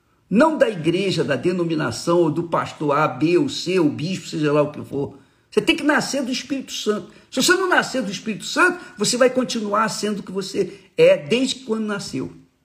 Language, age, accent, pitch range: Portuguese, 50-69, Brazilian, 125-185 Hz